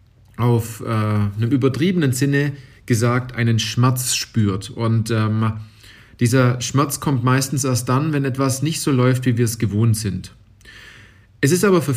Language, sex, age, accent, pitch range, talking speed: German, male, 40-59, German, 110-130 Hz, 155 wpm